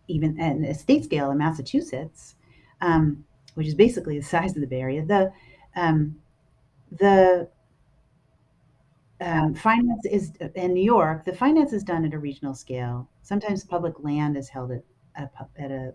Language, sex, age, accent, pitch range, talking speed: English, female, 40-59, American, 135-170 Hz, 160 wpm